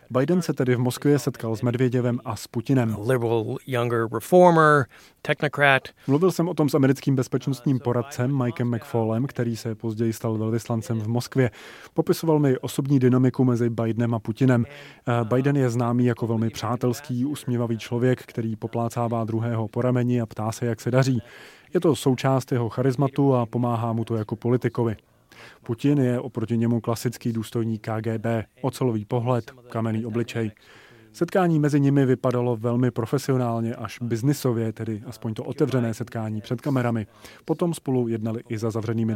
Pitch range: 115-135 Hz